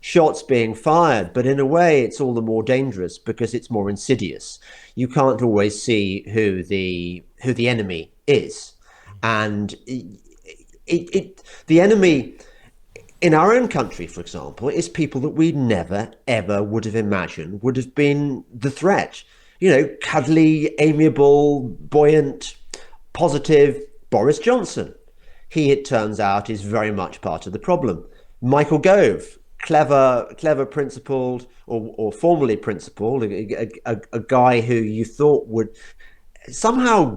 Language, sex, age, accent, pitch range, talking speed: English, male, 40-59, British, 110-150 Hz, 140 wpm